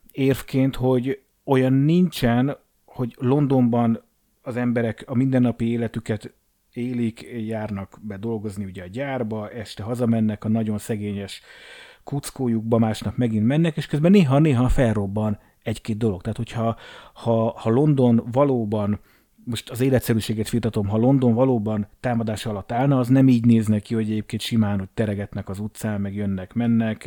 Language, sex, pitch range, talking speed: Hungarian, male, 110-130 Hz, 140 wpm